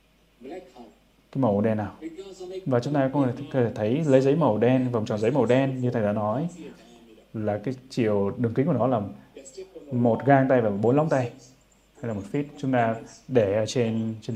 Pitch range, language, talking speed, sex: 110-135 Hz, Vietnamese, 200 wpm, male